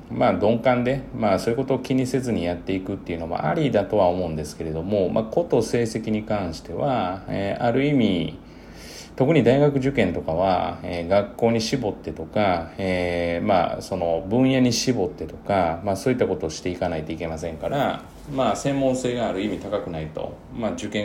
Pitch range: 85-115 Hz